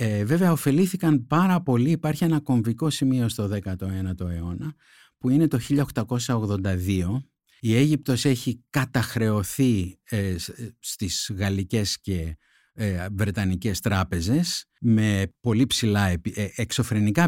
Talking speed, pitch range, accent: 95 wpm, 95-140 Hz, native